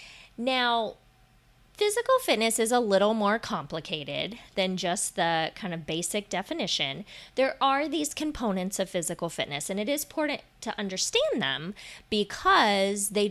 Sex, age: female, 20-39